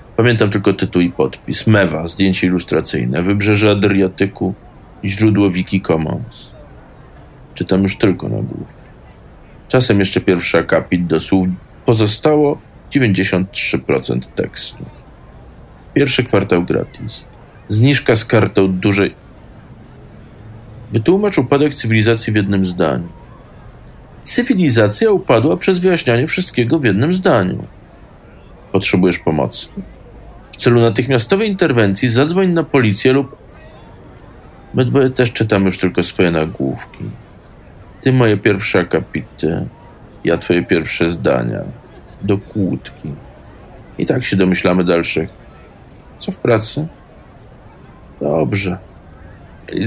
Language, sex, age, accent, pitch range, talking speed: Polish, male, 40-59, native, 95-125 Hz, 105 wpm